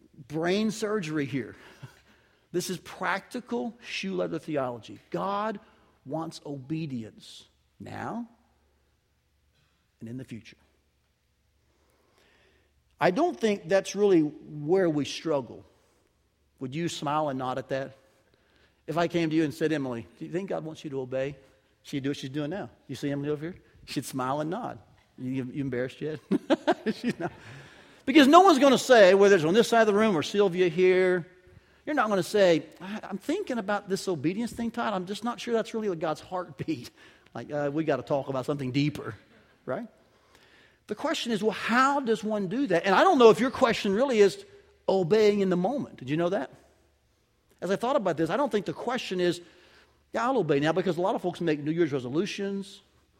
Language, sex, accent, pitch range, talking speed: English, male, American, 135-210 Hz, 190 wpm